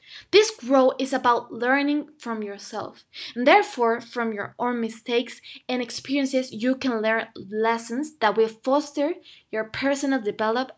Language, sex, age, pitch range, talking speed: English, female, 20-39, 230-285 Hz, 140 wpm